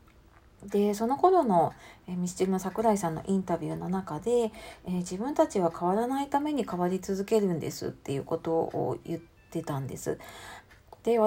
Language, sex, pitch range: Japanese, female, 165-225 Hz